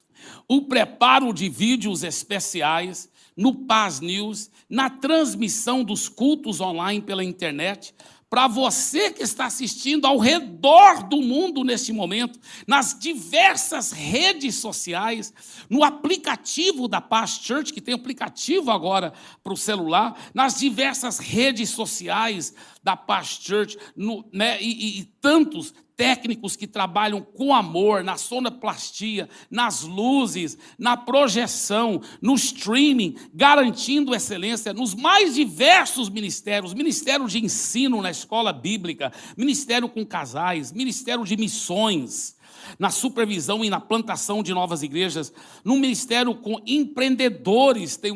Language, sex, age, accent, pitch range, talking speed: Portuguese, male, 60-79, Brazilian, 200-260 Hz, 120 wpm